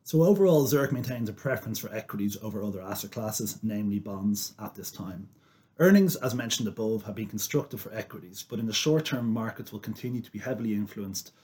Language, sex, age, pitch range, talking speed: English, male, 30-49, 100-130 Hz, 200 wpm